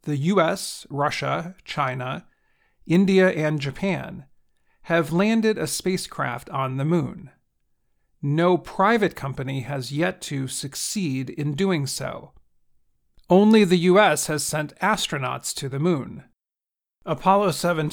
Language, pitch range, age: English, 140-180 Hz, 40-59